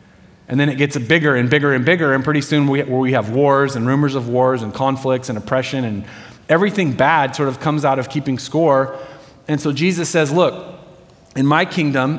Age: 30-49